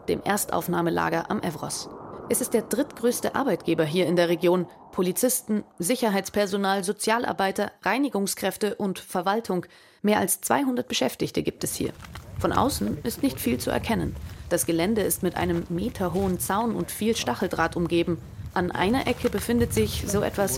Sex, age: female, 30-49